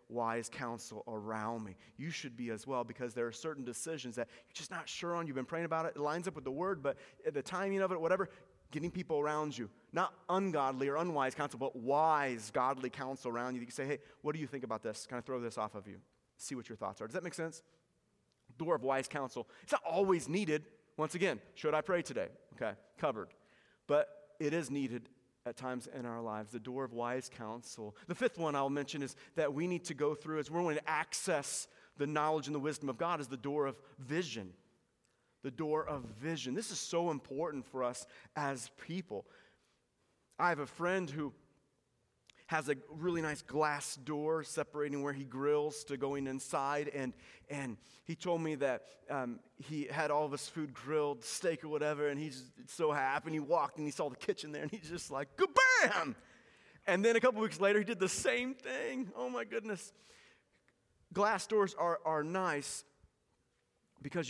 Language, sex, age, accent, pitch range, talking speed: English, male, 30-49, American, 130-170 Hz, 210 wpm